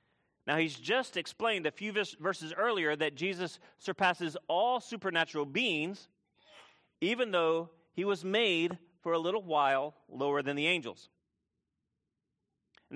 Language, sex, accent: English, male, American